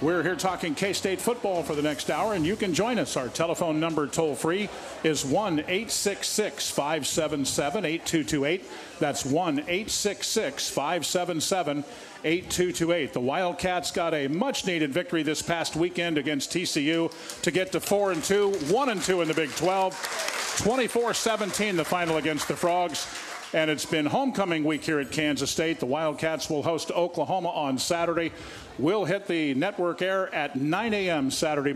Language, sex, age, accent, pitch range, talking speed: English, male, 50-69, American, 155-185 Hz, 150 wpm